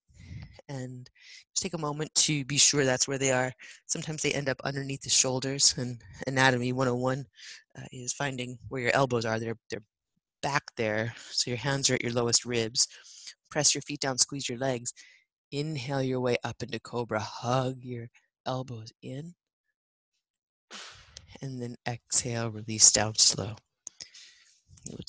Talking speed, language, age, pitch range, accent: 155 wpm, English, 30-49, 120-150 Hz, American